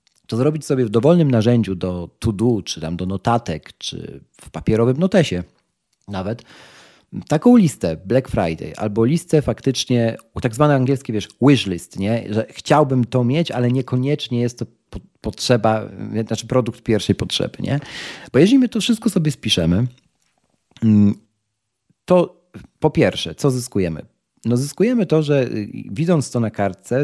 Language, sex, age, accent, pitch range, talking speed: Polish, male, 40-59, native, 105-140 Hz, 145 wpm